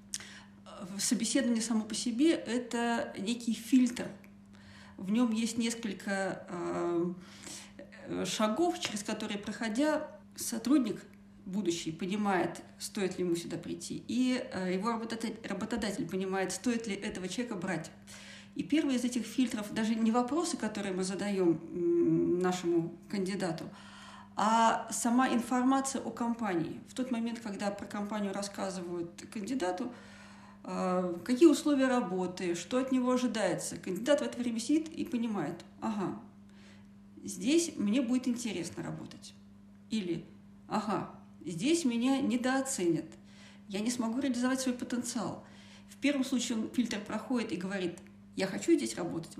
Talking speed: 125 wpm